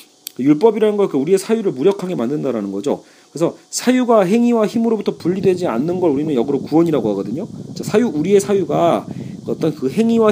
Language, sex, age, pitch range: Korean, male, 40-59, 150-205 Hz